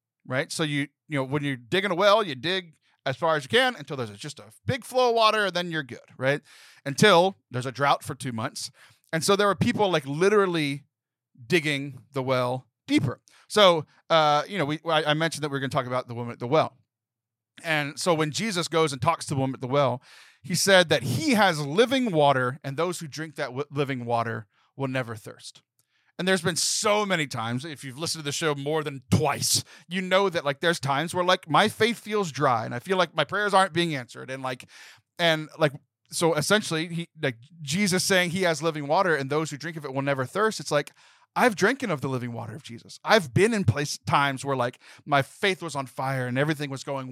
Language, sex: English, male